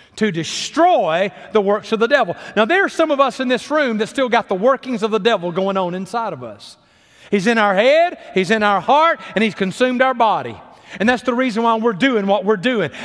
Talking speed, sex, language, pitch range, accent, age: 240 wpm, male, English, 170-250 Hz, American, 40-59